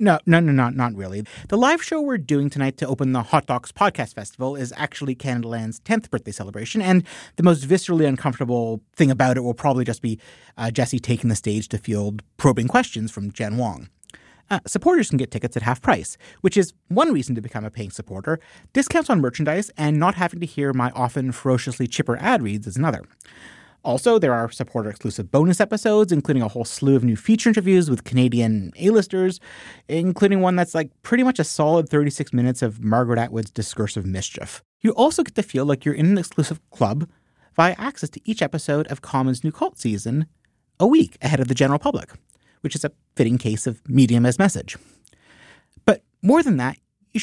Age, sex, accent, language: 30-49, male, American, English